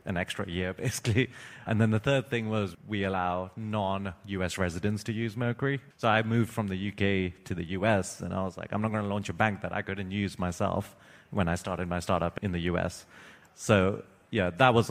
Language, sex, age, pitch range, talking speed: English, male, 30-49, 95-115 Hz, 215 wpm